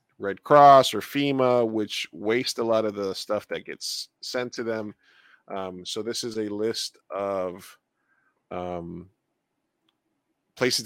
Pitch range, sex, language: 95-115 Hz, male, English